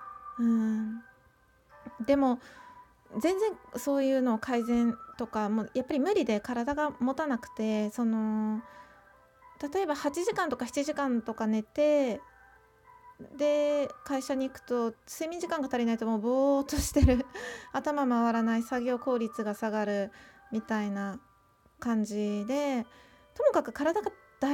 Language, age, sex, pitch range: Japanese, 20-39, female, 220-295 Hz